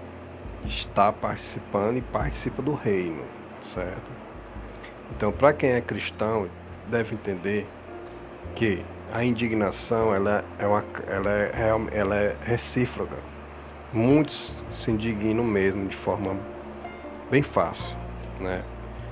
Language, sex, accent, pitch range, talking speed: Portuguese, male, Brazilian, 90-120 Hz, 105 wpm